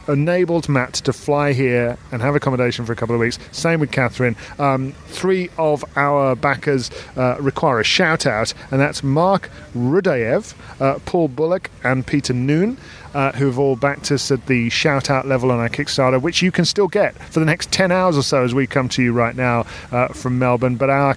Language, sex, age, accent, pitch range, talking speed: English, male, 40-59, British, 125-145 Hz, 210 wpm